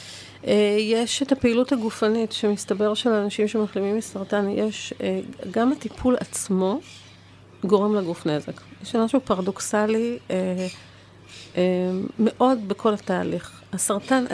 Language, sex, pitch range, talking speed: Hebrew, female, 180-225 Hz, 110 wpm